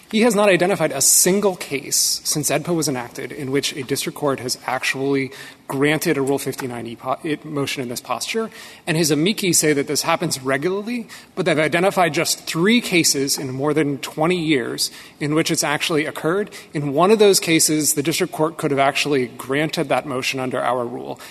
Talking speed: 190 wpm